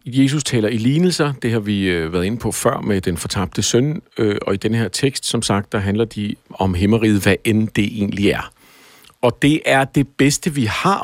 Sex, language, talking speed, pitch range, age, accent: male, Danish, 210 wpm, 100-130 Hz, 50-69, native